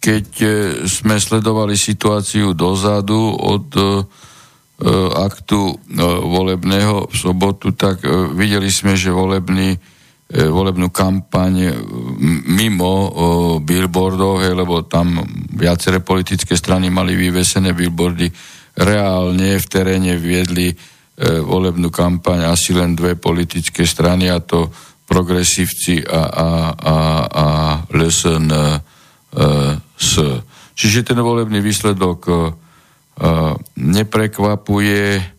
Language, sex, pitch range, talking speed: Slovak, male, 85-100 Hz, 100 wpm